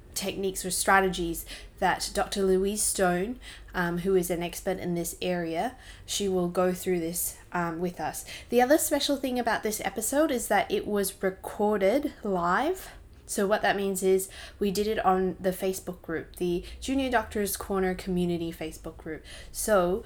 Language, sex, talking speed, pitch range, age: English, female, 170 wpm, 175-205 Hz, 20-39